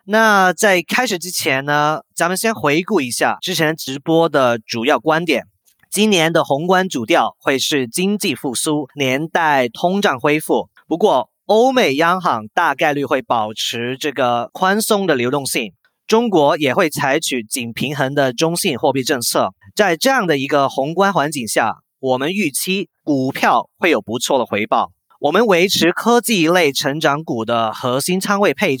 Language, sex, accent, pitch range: English, male, Chinese, 135-195 Hz